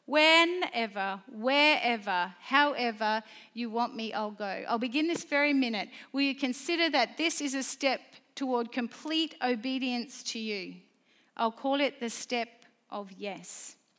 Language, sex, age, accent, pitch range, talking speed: English, female, 40-59, Australian, 220-280 Hz, 140 wpm